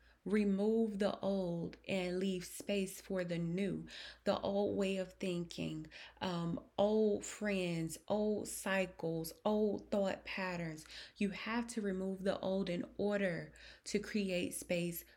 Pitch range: 175-205 Hz